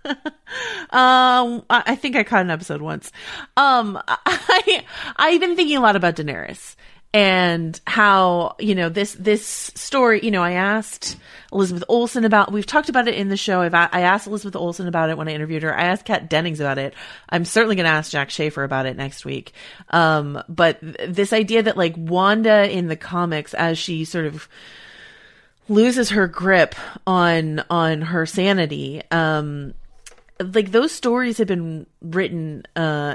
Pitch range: 150-200 Hz